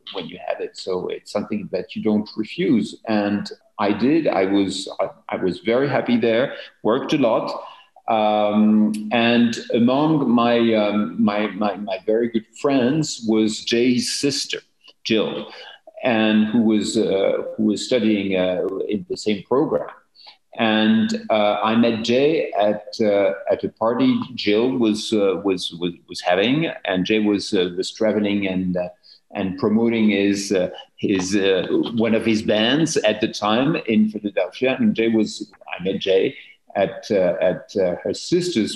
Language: English